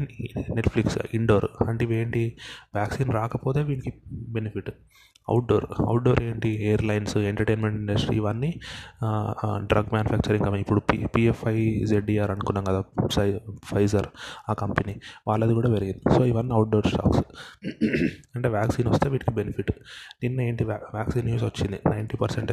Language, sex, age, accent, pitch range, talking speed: Telugu, male, 20-39, native, 105-120 Hz, 125 wpm